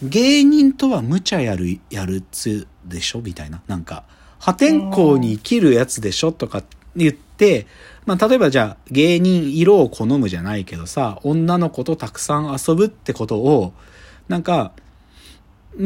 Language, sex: Japanese, male